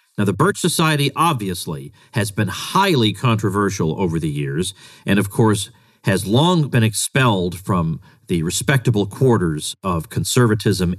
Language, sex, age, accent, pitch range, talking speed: English, male, 40-59, American, 105-140 Hz, 135 wpm